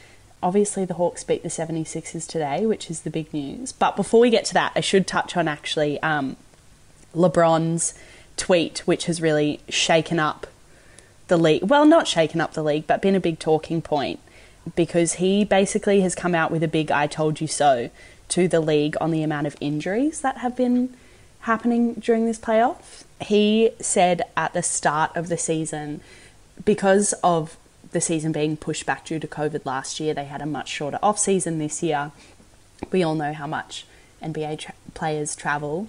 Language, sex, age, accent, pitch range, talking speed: English, female, 20-39, Australian, 150-180 Hz, 185 wpm